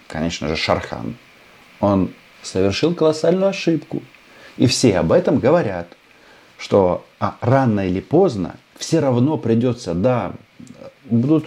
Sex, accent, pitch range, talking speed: male, native, 90-135 Hz, 110 wpm